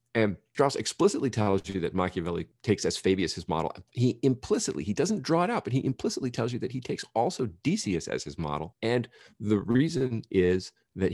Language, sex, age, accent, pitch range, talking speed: English, male, 40-59, American, 85-110 Hz, 200 wpm